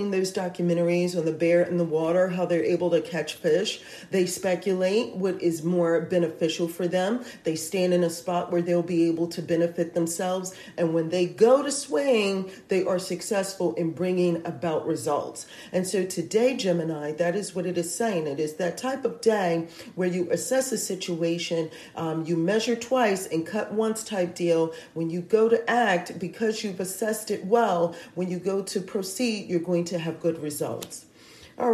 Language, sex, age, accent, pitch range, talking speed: English, female, 40-59, American, 170-210 Hz, 185 wpm